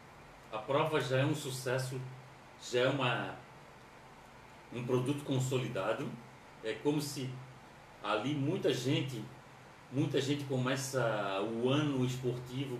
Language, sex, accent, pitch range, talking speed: Portuguese, male, Brazilian, 120-145 Hz, 110 wpm